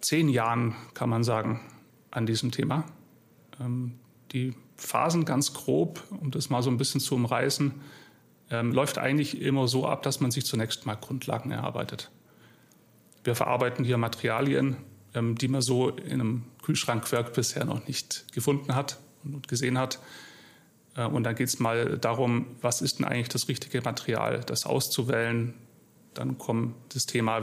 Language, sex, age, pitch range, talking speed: German, male, 30-49, 120-140 Hz, 150 wpm